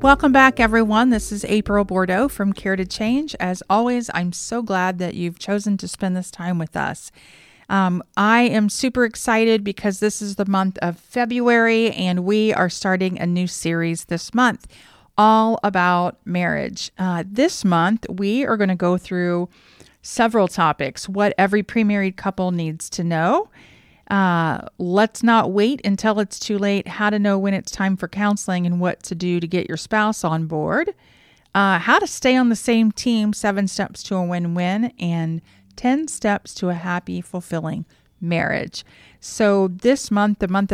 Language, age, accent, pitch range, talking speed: English, 40-59, American, 180-220 Hz, 175 wpm